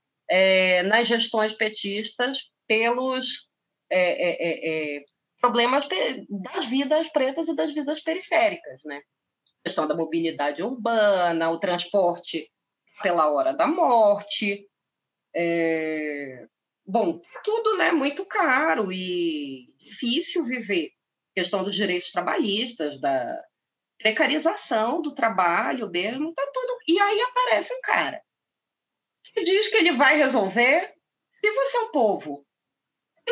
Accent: Brazilian